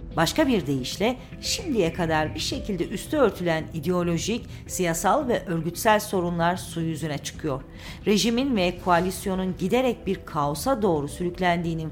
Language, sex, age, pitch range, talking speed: Turkish, female, 40-59, 160-215 Hz, 125 wpm